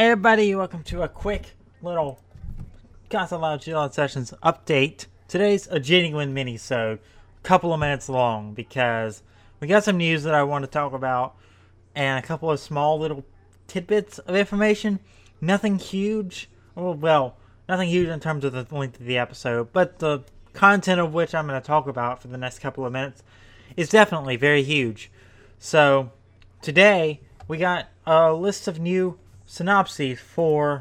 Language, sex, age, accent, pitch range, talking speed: English, male, 20-39, American, 110-160 Hz, 165 wpm